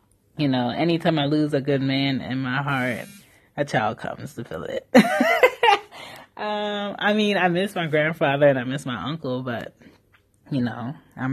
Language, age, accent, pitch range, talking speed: English, 20-39, American, 125-155 Hz, 175 wpm